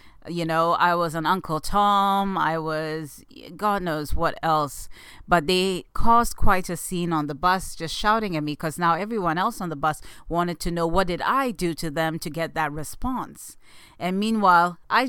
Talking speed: 195 wpm